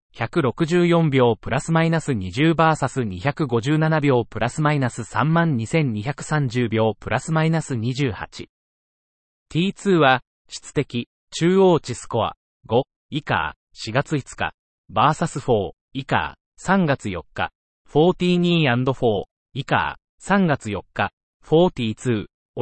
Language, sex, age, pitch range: Japanese, male, 30-49, 115-160 Hz